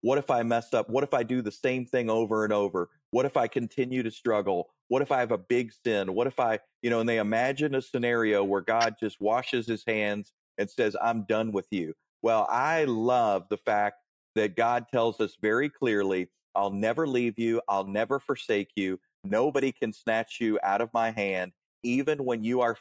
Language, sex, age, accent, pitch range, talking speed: English, male, 40-59, American, 105-120 Hz, 215 wpm